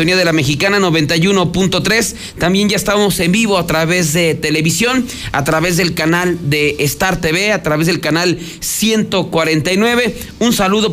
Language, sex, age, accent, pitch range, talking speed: Spanish, male, 40-59, Mexican, 155-195 Hz, 150 wpm